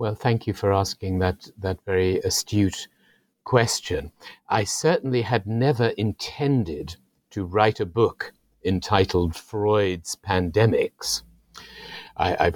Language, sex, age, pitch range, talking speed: English, male, 60-79, 95-115 Hz, 110 wpm